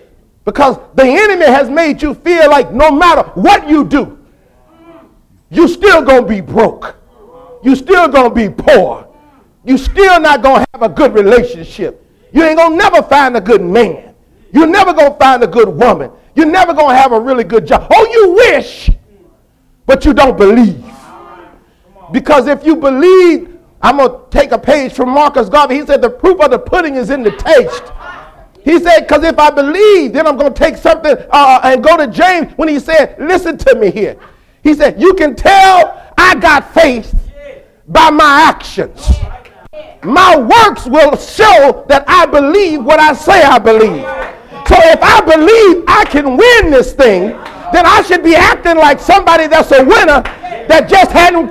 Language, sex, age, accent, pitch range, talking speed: English, male, 50-69, American, 270-350 Hz, 180 wpm